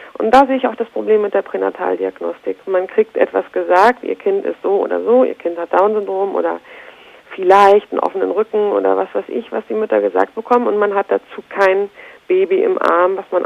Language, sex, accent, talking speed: German, female, German, 215 wpm